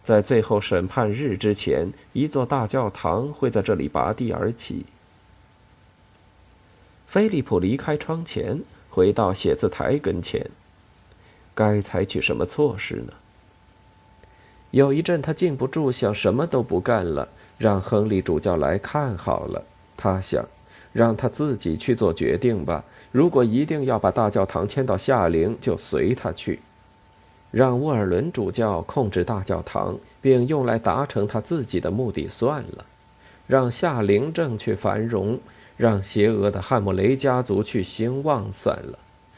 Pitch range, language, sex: 95-125 Hz, Chinese, male